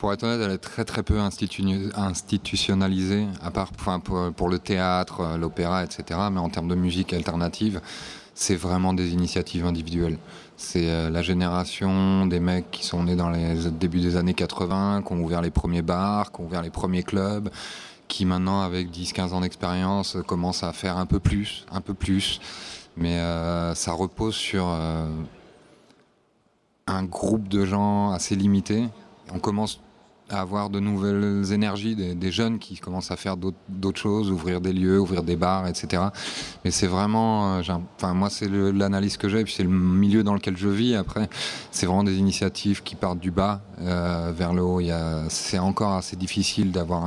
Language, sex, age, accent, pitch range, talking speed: French, male, 20-39, French, 90-100 Hz, 185 wpm